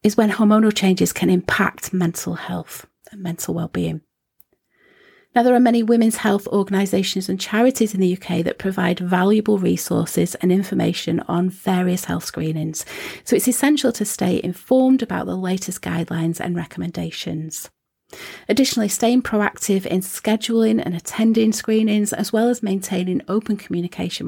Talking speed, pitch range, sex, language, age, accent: 145 wpm, 175-220 Hz, female, English, 40-59, British